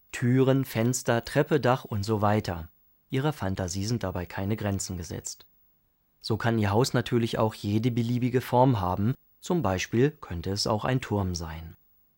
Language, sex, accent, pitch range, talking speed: German, male, German, 95-130 Hz, 160 wpm